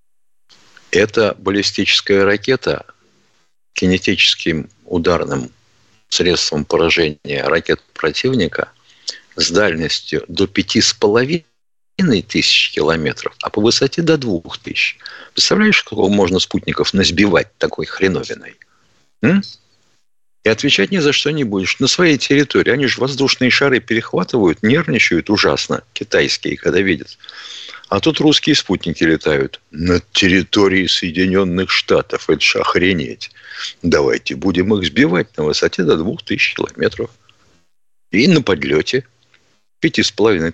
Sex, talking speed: male, 110 wpm